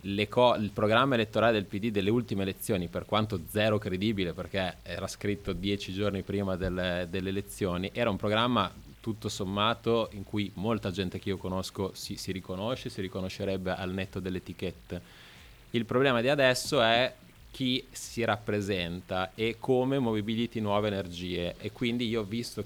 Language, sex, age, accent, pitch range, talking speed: Italian, male, 20-39, native, 95-115 Hz, 160 wpm